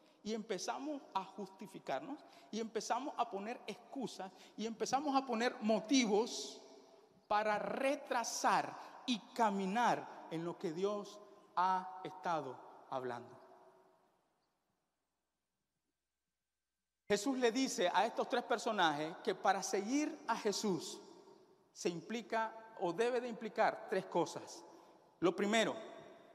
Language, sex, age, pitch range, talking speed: Spanish, male, 50-69, 215-290 Hz, 105 wpm